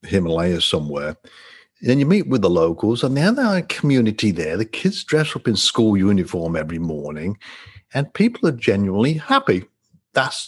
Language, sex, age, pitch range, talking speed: English, male, 50-69, 95-155 Hz, 165 wpm